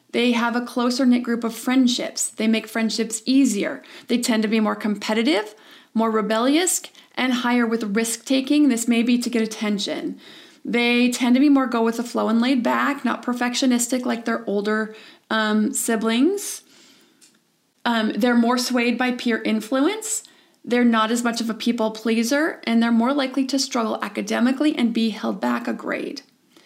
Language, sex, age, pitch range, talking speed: English, female, 30-49, 225-285 Hz, 155 wpm